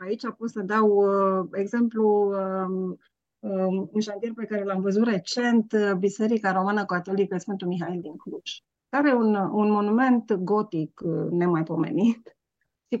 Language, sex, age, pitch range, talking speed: Romanian, female, 30-49, 190-245 Hz, 140 wpm